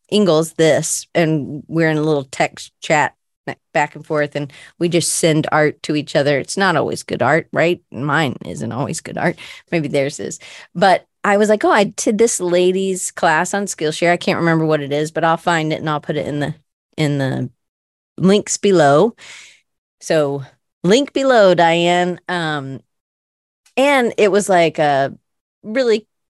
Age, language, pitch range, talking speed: 30-49, English, 155-215 Hz, 175 wpm